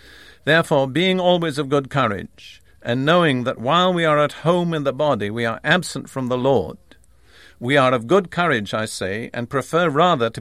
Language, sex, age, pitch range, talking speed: English, male, 50-69, 130-160 Hz, 195 wpm